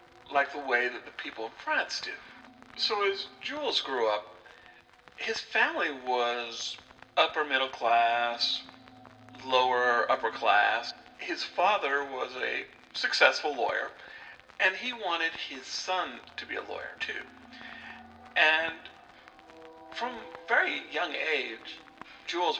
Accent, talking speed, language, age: American, 120 wpm, English, 50-69